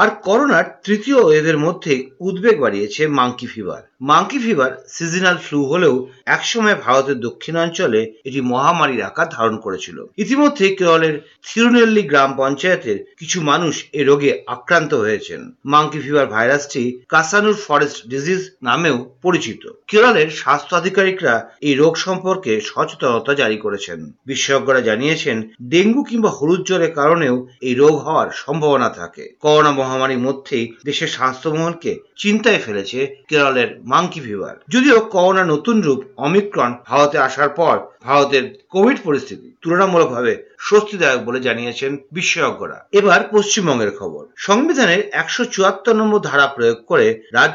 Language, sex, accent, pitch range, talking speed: Bengali, male, native, 135-205 Hz, 55 wpm